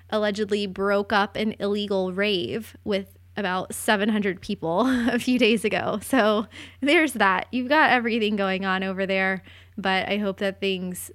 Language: English